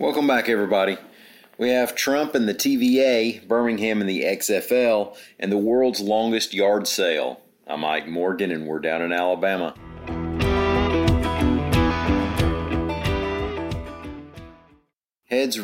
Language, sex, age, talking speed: English, male, 40-59, 105 wpm